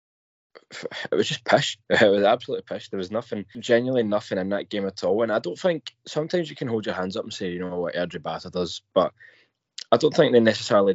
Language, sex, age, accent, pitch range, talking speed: English, male, 20-39, British, 95-125 Hz, 230 wpm